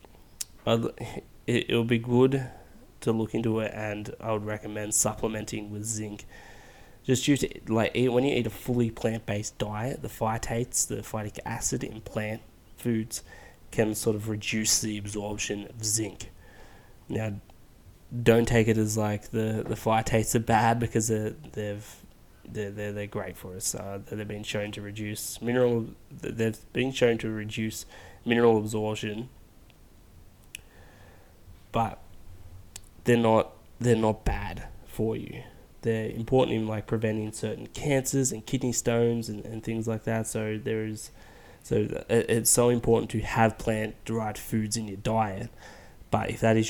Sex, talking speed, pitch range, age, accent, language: male, 155 wpm, 105-115 Hz, 20-39, Australian, English